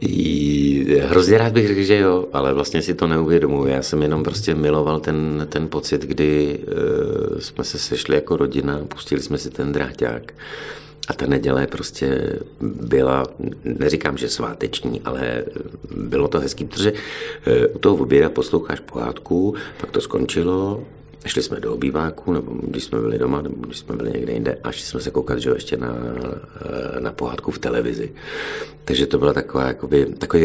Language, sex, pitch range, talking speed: Czech, male, 75-90 Hz, 160 wpm